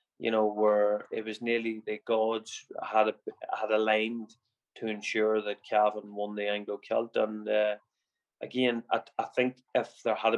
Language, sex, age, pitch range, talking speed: English, male, 20-39, 105-115 Hz, 170 wpm